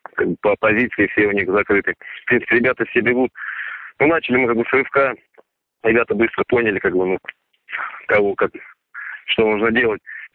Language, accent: Russian, native